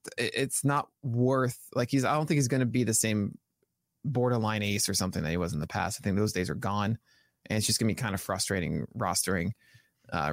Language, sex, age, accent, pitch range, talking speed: English, male, 20-39, American, 110-145 Hz, 230 wpm